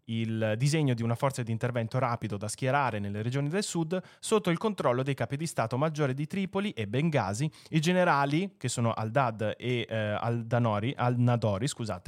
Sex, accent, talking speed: male, native, 180 wpm